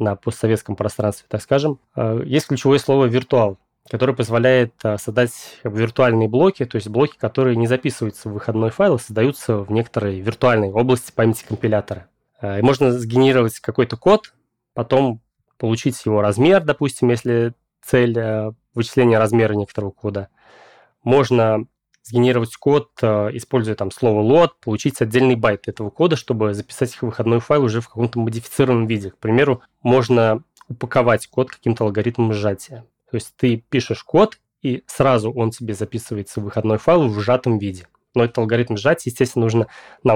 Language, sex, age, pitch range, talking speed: Russian, male, 20-39, 110-130 Hz, 150 wpm